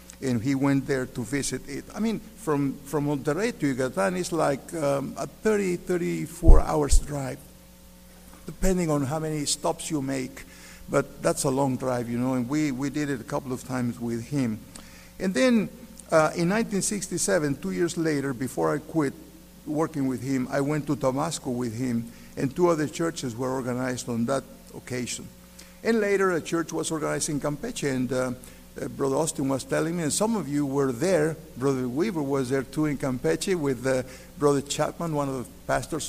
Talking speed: 190 wpm